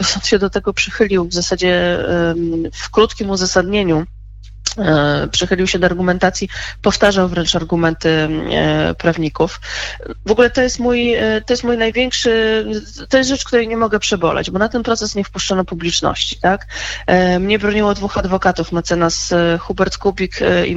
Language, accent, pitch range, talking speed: Polish, native, 180-220 Hz, 145 wpm